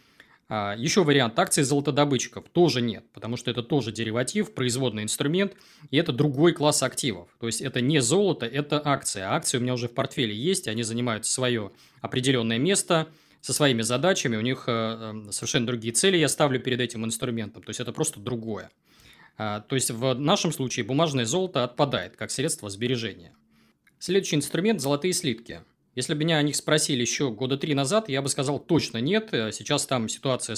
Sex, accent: male, native